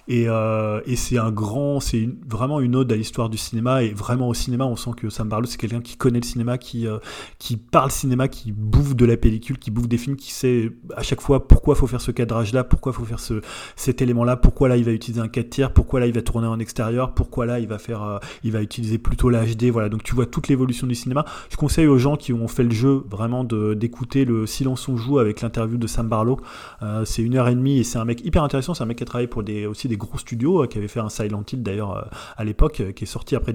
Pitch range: 115-130 Hz